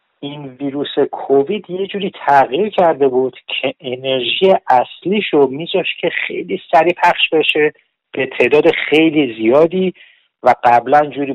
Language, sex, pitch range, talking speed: Persian, male, 135-190 Hz, 130 wpm